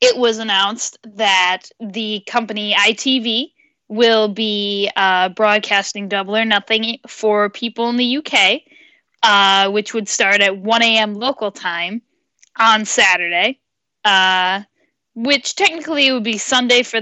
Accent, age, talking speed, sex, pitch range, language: American, 10-29, 130 wpm, female, 195-245 Hz, English